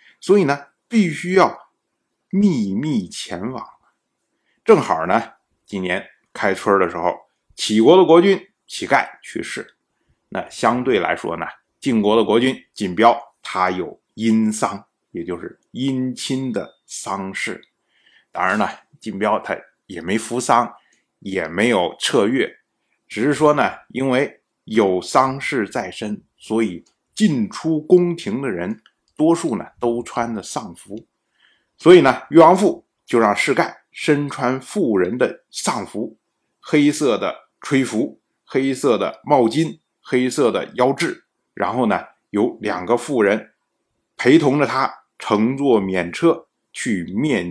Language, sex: Chinese, male